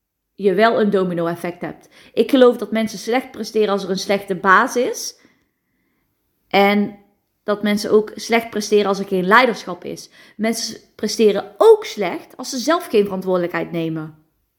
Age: 20-39